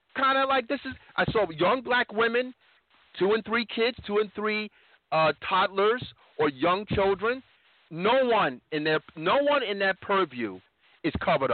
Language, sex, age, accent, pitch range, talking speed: English, male, 40-59, American, 155-225 Hz, 170 wpm